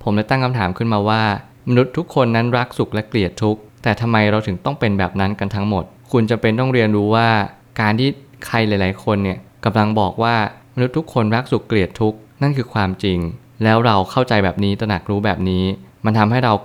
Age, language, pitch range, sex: 20-39, Thai, 100-120 Hz, male